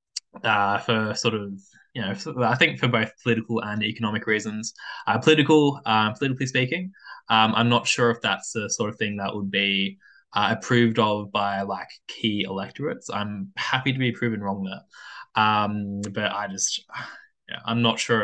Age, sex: 10-29, male